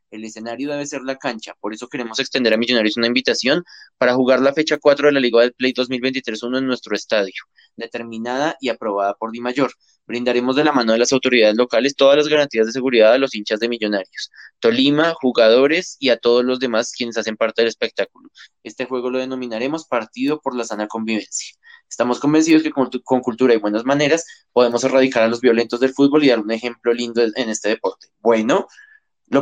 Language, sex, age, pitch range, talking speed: Spanish, male, 20-39, 115-150 Hz, 200 wpm